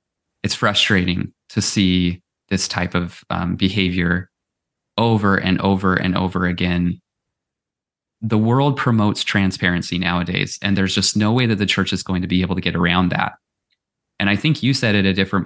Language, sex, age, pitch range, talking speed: English, male, 20-39, 90-105 Hz, 175 wpm